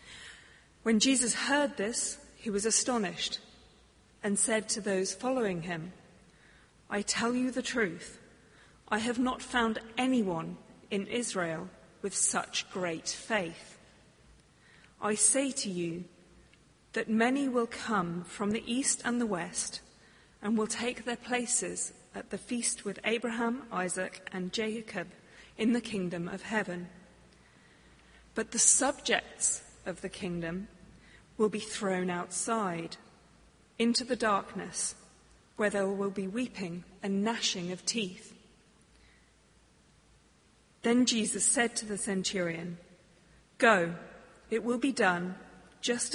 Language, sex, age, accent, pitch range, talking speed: English, female, 40-59, British, 185-235 Hz, 125 wpm